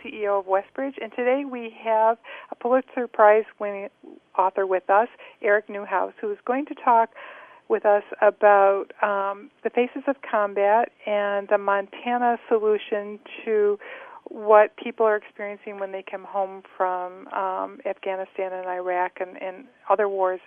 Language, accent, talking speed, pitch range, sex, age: English, American, 150 wpm, 195-245 Hz, female, 50-69